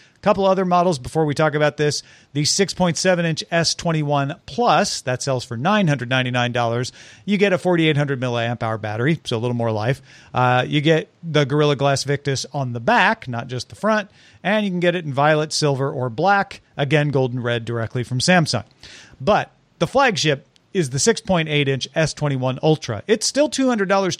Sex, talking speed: male, 175 wpm